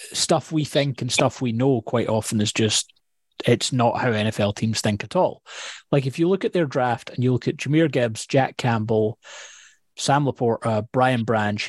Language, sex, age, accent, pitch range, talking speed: English, male, 30-49, British, 115-160 Hz, 195 wpm